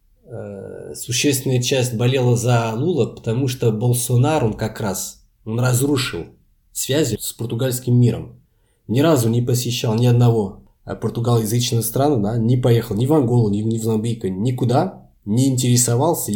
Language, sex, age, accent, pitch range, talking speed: Russian, male, 20-39, native, 105-125 Hz, 125 wpm